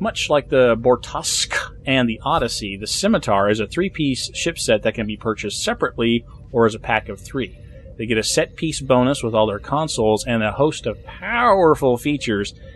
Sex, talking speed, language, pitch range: male, 190 wpm, English, 105-130 Hz